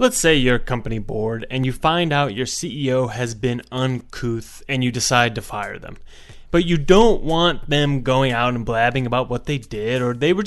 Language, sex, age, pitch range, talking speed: English, male, 20-39, 120-155 Hz, 210 wpm